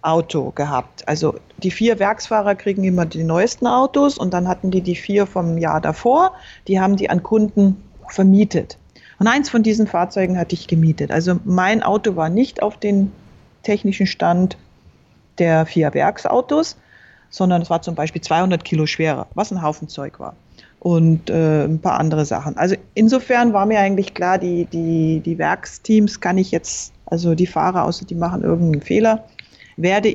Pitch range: 170-215 Hz